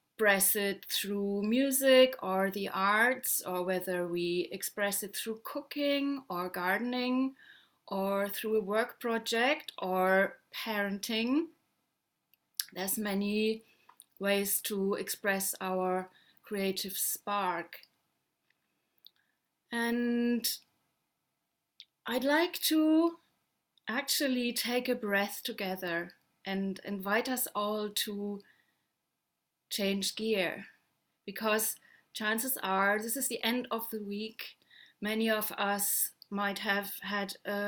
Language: English